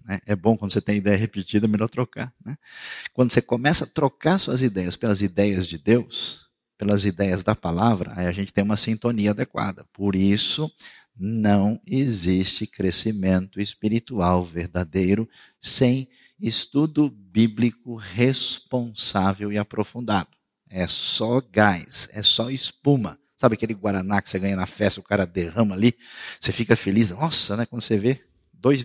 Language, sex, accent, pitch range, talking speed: Portuguese, male, Brazilian, 100-130 Hz, 150 wpm